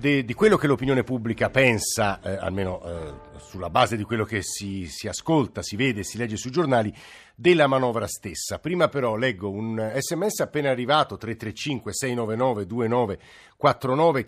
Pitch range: 115-145 Hz